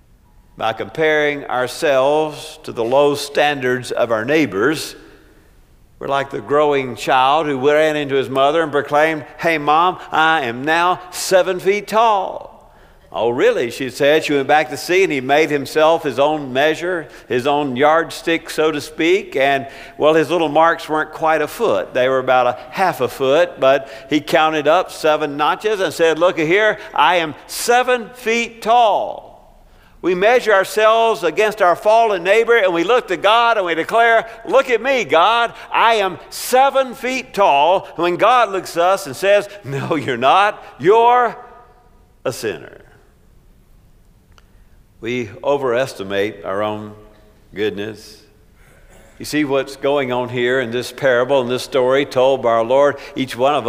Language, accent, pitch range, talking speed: English, American, 130-190 Hz, 160 wpm